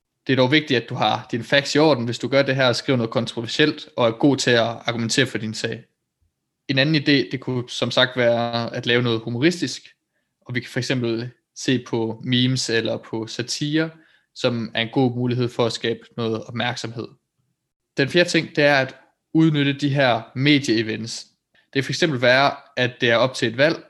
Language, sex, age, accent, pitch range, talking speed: Danish, male, 20-39, native, 120-145 Hz, 210 wpm